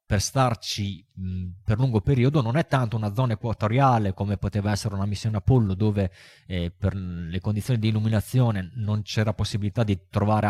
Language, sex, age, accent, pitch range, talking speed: Italian, male, 20-39, native, 100-120 Hz, 165 wpm